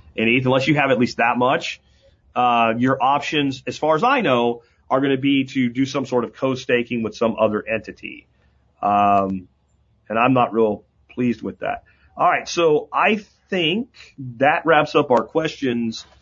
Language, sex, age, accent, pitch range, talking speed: English, male, 40-59, American, 115-150 Hz, 180 wpm